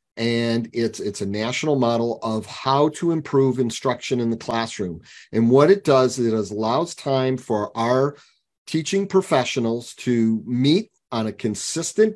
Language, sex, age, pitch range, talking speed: Arabic, male, 40-59, 115-145 Hz, 155 wpm